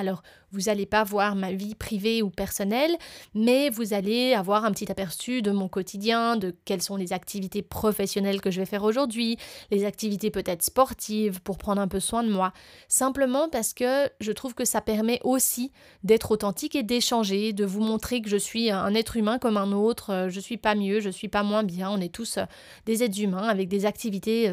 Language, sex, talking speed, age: French, female, 215 wpm, 20-39